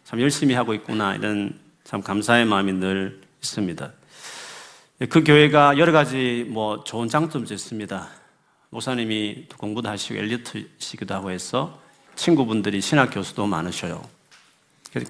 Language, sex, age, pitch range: Korean, male, 40-59, 100-125 Hz